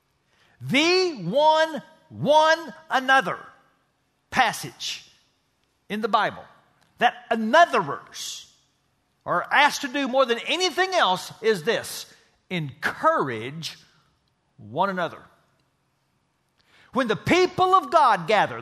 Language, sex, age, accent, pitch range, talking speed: English, male, 50-69, American, 210-305 Hz, 95 wpm